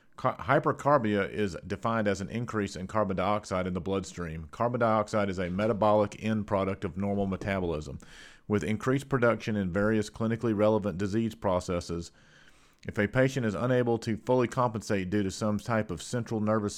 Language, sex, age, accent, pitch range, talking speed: English, male, 40-59, American, 95-115 Hz, 165 wpm